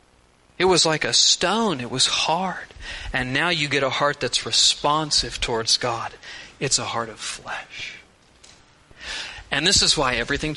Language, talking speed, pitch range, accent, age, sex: English, 160 wpm, 130-195 Hz, American, 40-59, male